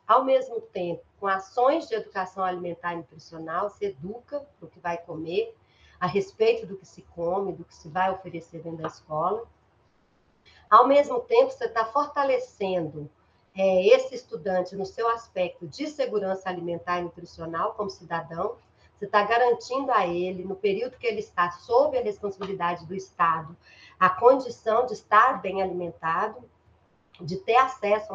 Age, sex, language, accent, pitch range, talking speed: 40-59, female, Portuguese, Brazilian, 180-245 Hz, 155 wpm